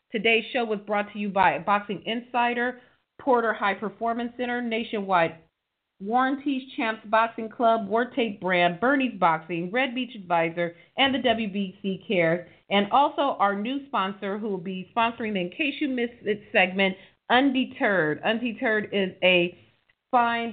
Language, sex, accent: English, female, American